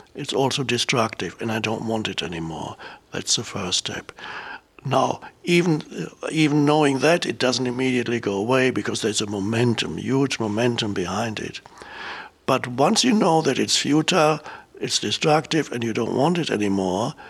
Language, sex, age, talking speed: English, male, 60-79, 160 wpm